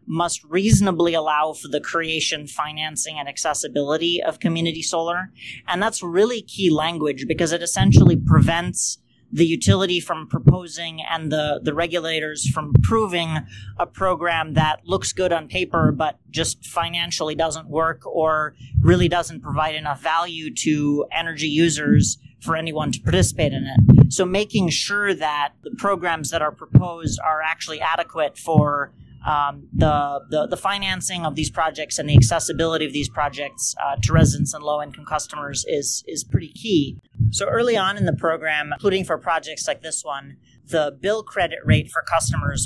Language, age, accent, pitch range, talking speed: English, 30-49, American, 145-170 Hz, 160 wpm